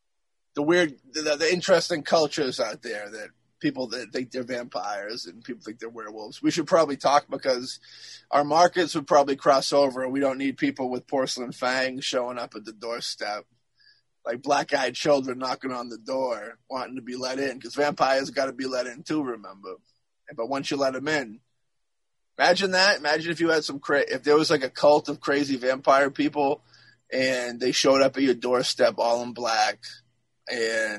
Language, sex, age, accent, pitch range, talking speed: English, male, 20-39, American, 125-150 Hz, 190 wpm